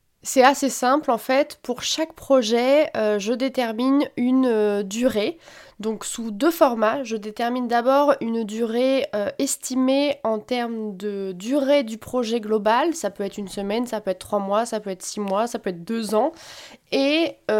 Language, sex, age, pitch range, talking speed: French, female, 20-39, 205-260 Hz, 180 wpm